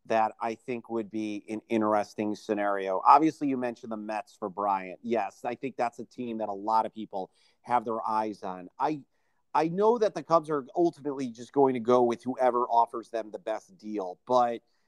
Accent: American